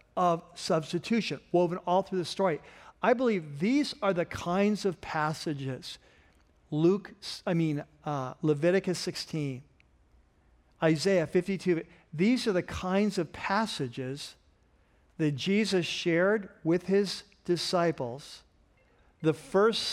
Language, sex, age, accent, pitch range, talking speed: English, male, 50-69, American, 150-190 Hz, 110 wpm